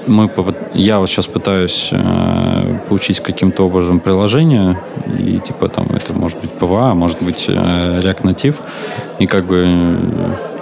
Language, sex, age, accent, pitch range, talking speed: Russian, male, 20-39, native, 90-100 Hz, 140 wpm